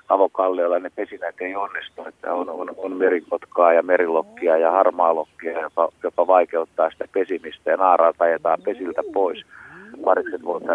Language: Finnish